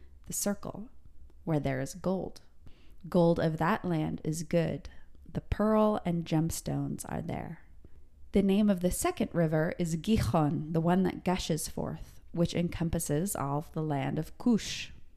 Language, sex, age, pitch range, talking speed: English, female, 20-39, 130-175 Hz, 150 wpm